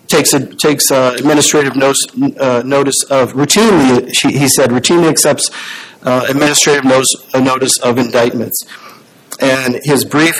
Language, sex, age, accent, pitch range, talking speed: English, male, 50-69, American, 125-145 Hz, 135 wpm